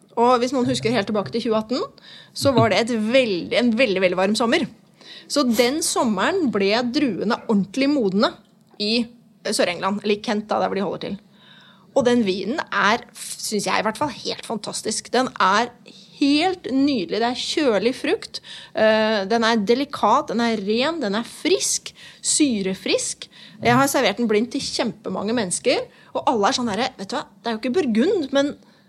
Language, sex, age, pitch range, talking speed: English, female, 30-49, 205-260 Hz, 180 wpm